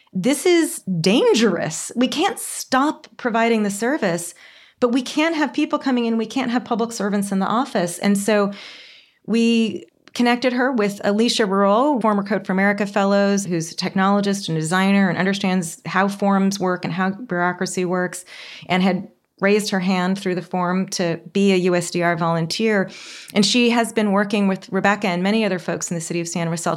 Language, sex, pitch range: English, female, 190-240 Hz